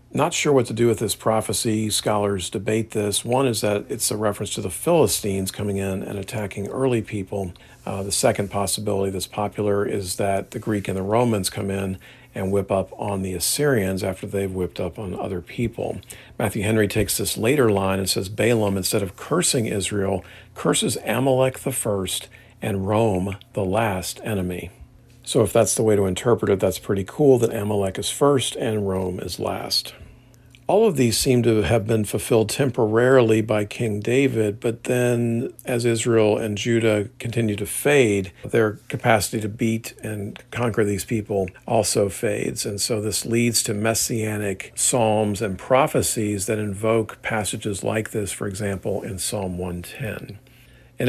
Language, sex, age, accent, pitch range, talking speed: English, male, 50-69, American, 100-115 Hz, 170 wpm